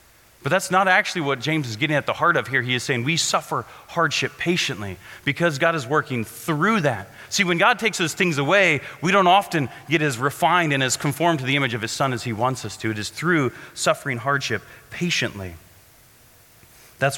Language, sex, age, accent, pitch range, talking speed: English, male, 30-49, American, 120-160 Hz, 210 wpm